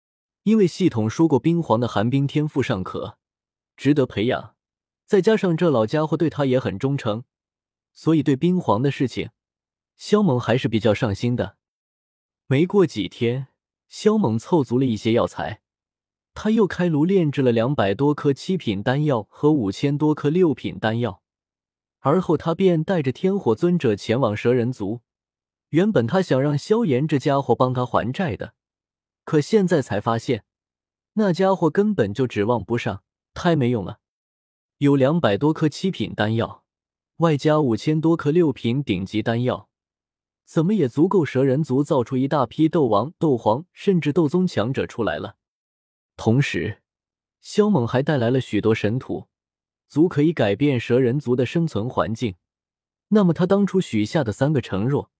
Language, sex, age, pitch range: Chinese, male, 20-39, 115-165 Hz